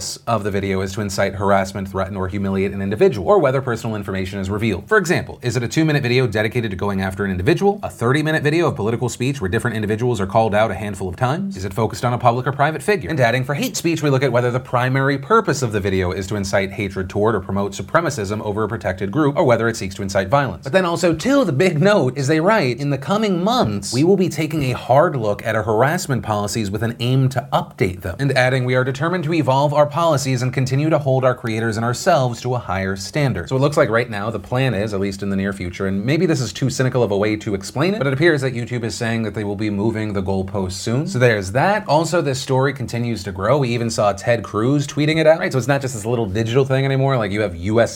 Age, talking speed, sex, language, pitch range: 30-49, 270 wpm, male, English, 105-145 Hz